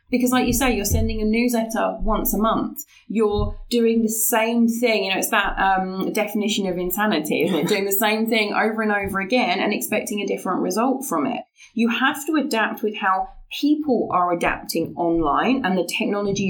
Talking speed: 195 wpm